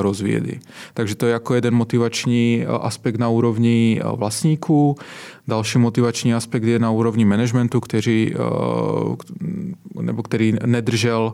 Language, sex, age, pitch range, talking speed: Czech, male, 20-39, 110-120 Hz, 115 wpm